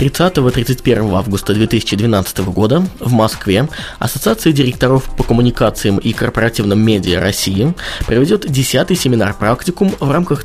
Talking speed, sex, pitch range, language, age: 110 wpm, male, 110-155 Hz, Russian, 20-39